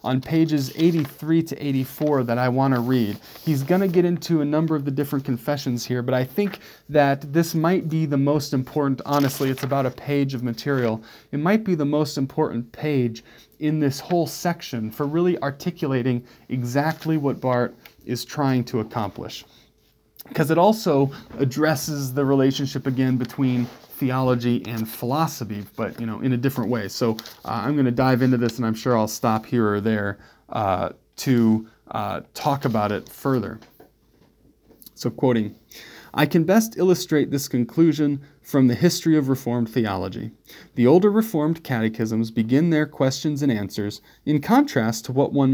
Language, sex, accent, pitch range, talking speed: English, male, American, 120-160 Hz, 165 wpm